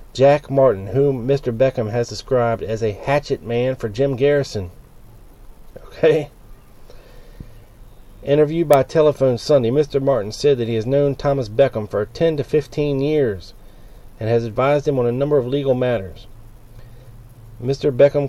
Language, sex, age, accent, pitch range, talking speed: English, male, 40-59, American, 110-140 Hz, 150 wpm